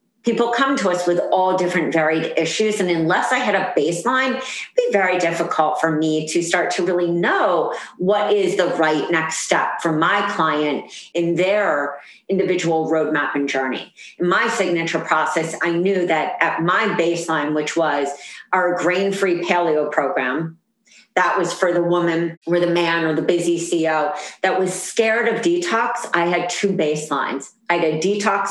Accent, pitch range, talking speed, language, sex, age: American, 160-195 Hz, 175 wpm, English, female, 40-59